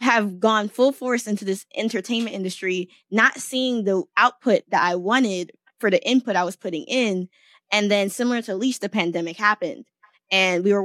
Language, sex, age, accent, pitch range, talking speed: English, female, 20-39, American, 180-230 Hz, 185 wpm